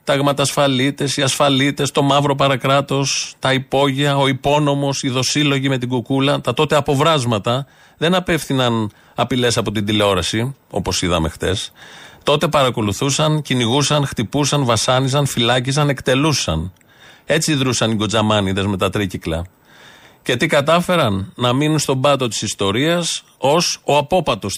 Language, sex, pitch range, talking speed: Greek, male, 105-145 Hz, 130 wpm